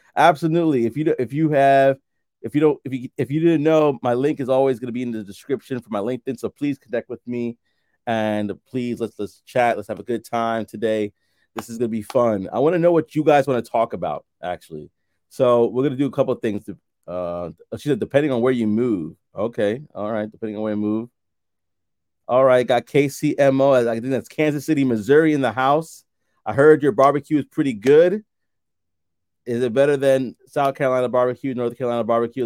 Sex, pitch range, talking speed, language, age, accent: male, 105-140 Hz, 220 wpm, English, 30-49, American